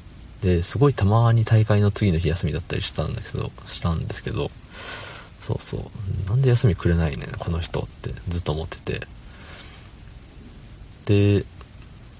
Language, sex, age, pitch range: Japanese, male, 40-59, 85-105 Hz